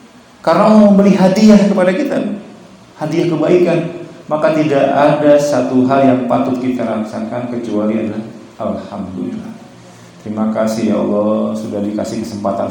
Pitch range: 105-145 Hz